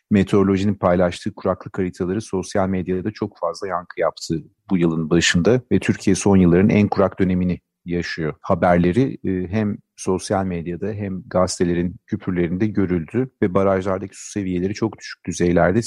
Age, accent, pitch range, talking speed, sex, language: 40-59, native, 90-105 Hz, 135 wpm, male, Turkish